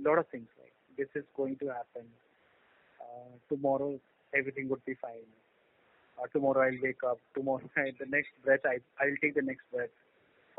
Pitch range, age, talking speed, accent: 135-155 Hz, 30-49, 185 wpm, native